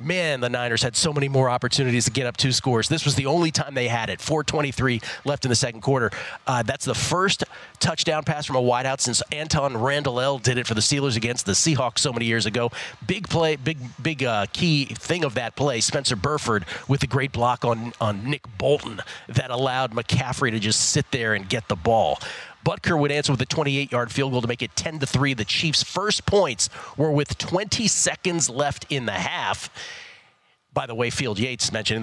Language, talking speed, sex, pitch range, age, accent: English, 210 wpm, male, 120-150 Hz, 40-59, American